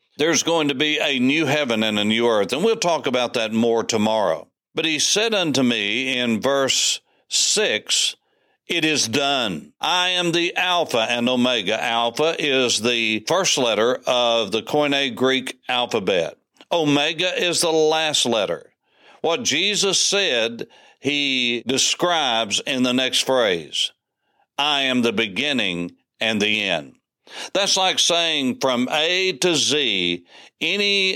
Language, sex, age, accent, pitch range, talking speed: English, male, 60-79, American, 125-180 Hz, 145 wpm